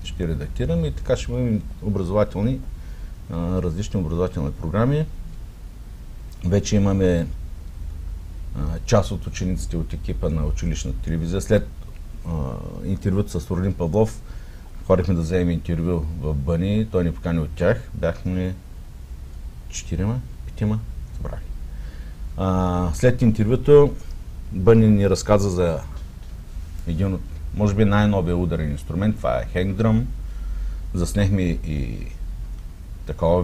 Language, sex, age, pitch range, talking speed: Bulgarian, male, 50-69, 80-105 Hz, 110 wpm